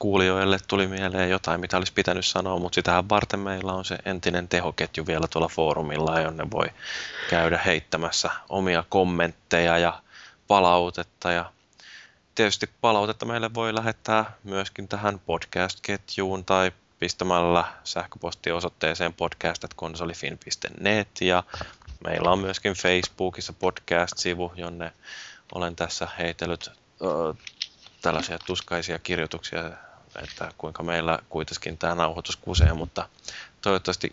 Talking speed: 110 wpm